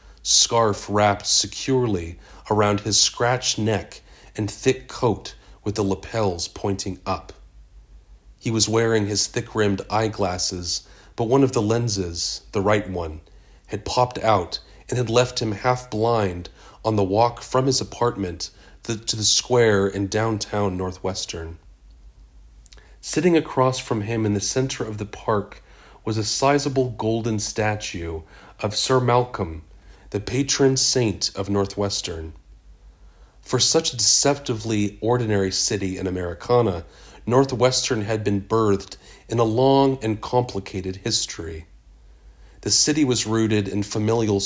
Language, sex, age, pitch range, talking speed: English, male, 40-59, 95-115 Hz, 130 wpm